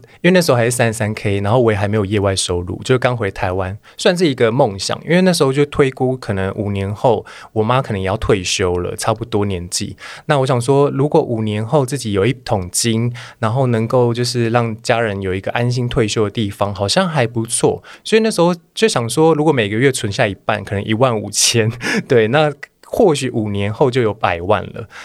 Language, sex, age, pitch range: Chinese, male, 20-39, 105-135 Hz